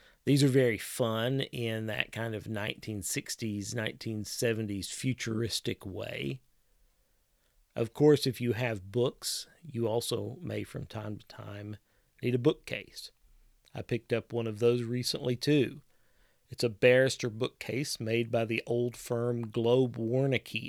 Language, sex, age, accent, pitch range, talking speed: English, male, 40-59, American, 105-125 Hz, 135 wpm